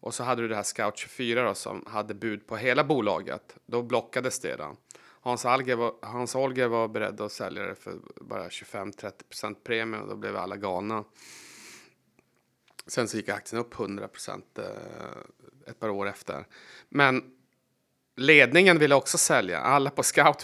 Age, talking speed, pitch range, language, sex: 30-49, 160 wpm, 105-125 Hz, Swedish, male